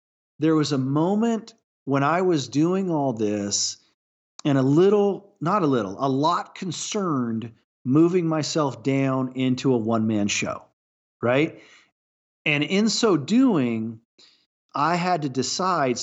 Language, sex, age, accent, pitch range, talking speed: English, male, 40-59, American, 115-155 Hz, 135 wpm